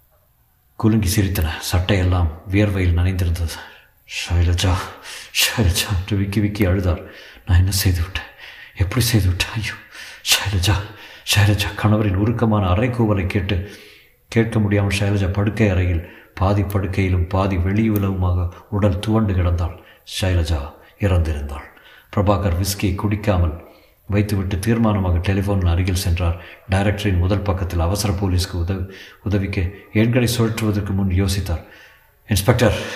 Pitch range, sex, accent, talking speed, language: 90-105 Hz, male, native, 100 wpm, Tamil